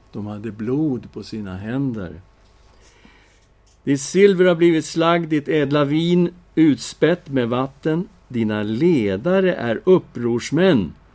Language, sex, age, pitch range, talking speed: Swedish, male, 60-79, 110-180 Hz, 115 wpm